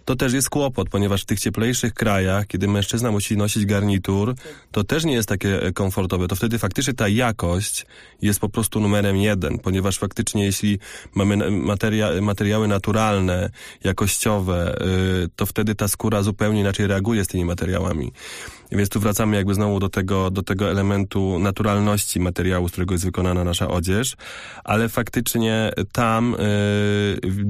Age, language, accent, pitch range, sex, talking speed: 20-39, Polish, native, 95-105 Hz, male, 150 wpm